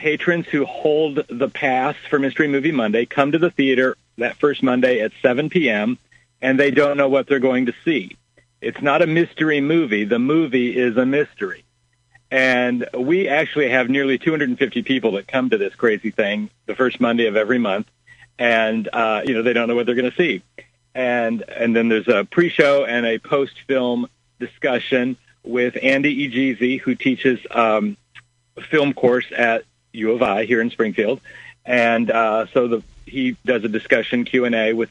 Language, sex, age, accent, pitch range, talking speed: English, male, 50-69, American, 115-135 Hz, 180 wpm